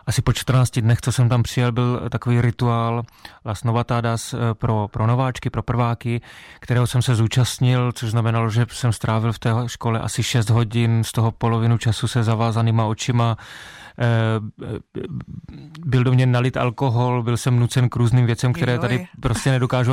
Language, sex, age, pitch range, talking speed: Czech, male, 30-49, 115-125 Hz, 165 wpm